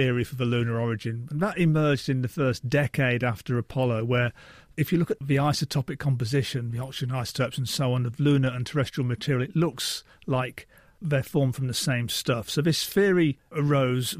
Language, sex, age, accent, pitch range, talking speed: English, male, 40-59, British, 130-160 Hz, 195 wpm